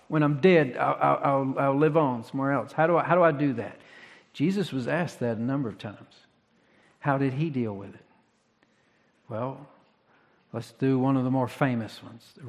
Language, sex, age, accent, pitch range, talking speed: English, male, 50-69, American, 115-145 Hz, 200 wpm